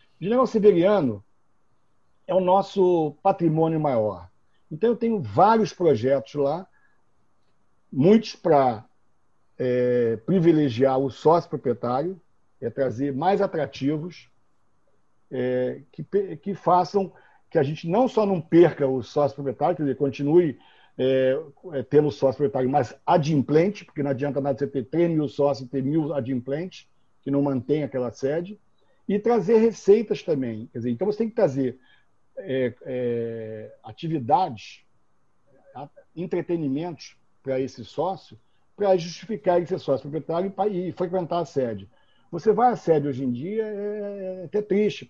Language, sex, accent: Portuguese, male, Brazilian